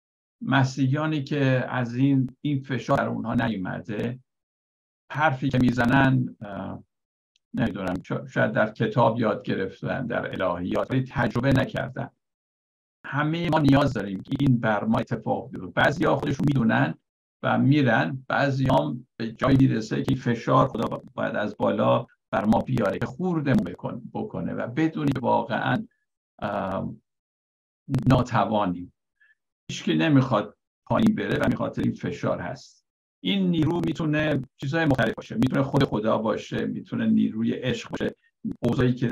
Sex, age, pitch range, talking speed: male, 50-69, 120-145 Hz, 125 wpm